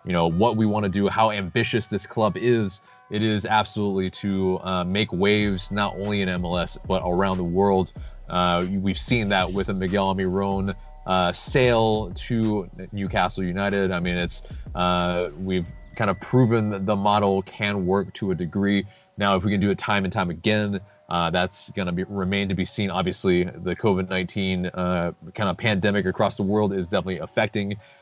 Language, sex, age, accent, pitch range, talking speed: English, male, 30-49, American, 90-110 Hz, 190 wpm